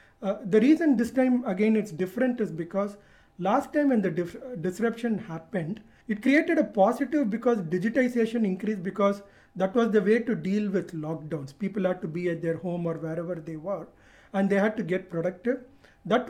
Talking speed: 190 wpm